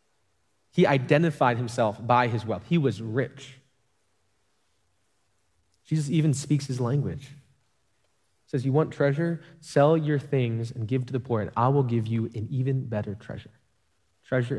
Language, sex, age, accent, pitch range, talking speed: English, male, 20-39, American, 105-135 Hz, 150 wpm